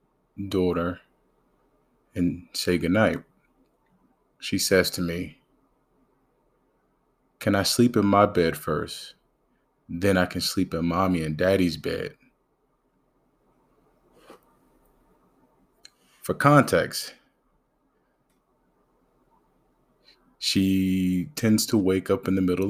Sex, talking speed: male, 90 wpm